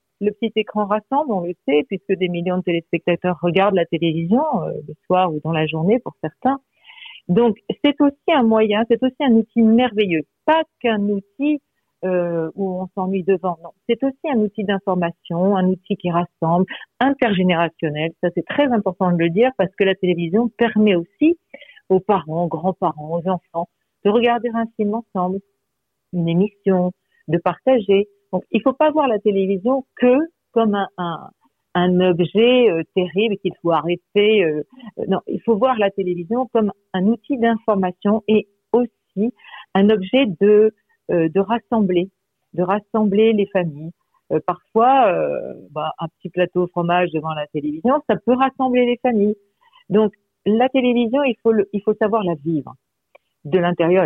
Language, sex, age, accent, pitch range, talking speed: French, female, 50-69, French, 175-230 Hz, 170 wpm